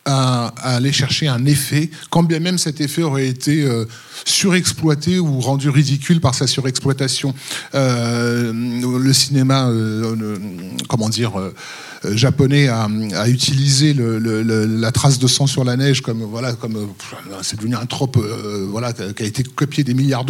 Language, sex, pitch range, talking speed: French, male, 125-155 Hz, 155 wpm